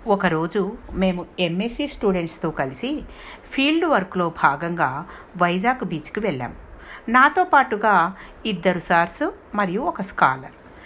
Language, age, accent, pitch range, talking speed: Telugu, 60-79, native, 160-235 Hz, 100 wpm